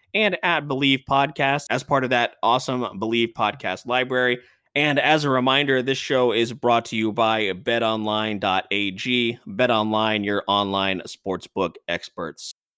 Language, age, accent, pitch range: English, 20-39, American, 105-140 Hz